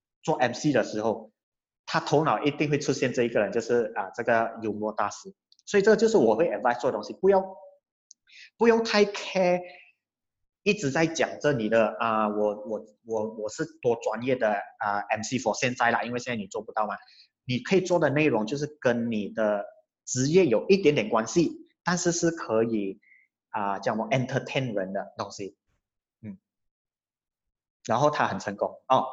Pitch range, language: 110-160 Hz, Chinese